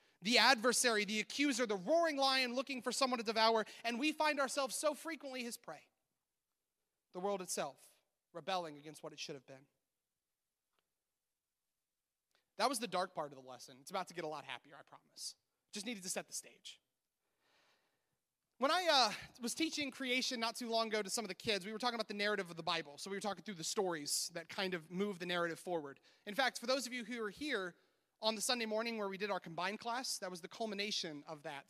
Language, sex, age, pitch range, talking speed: English, male, 30-49, 180-255 Hz, 220 wpm